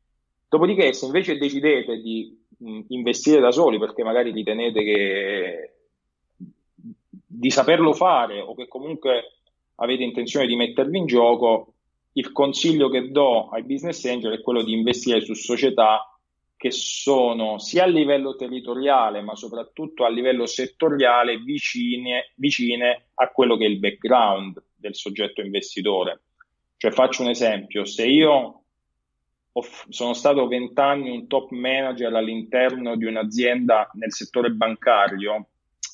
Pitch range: 110-130 Hz